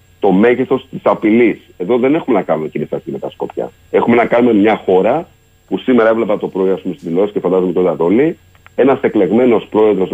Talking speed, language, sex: 220 wpm, Greek, male